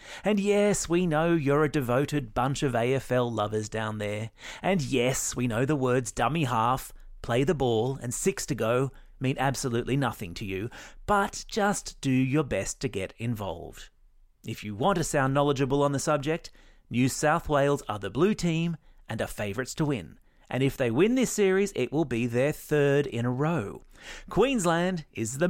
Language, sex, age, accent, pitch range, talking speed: English, male, 30-49, Australian, 120-175 Hz, 185 wpm